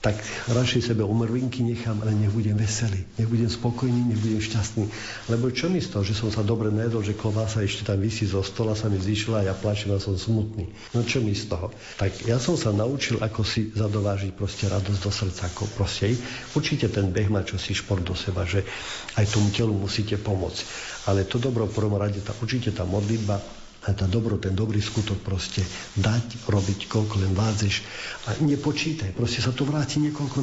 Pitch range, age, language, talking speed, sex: 100-120 Hz, 50-69, Slovak, 190 wpm, male